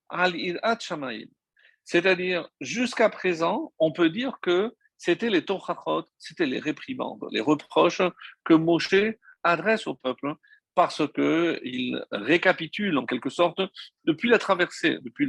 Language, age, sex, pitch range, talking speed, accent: French, 50-69, male, 150-235 Hz, 120 wpm, French